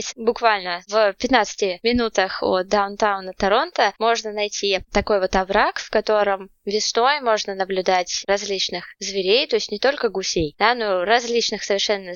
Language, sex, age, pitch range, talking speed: Russian, female, 20-39, 195-235 Hz, 135 wpm